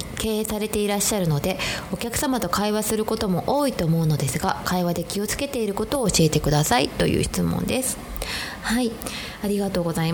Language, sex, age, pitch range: Japanese, female, 20-39, 160-230 Hz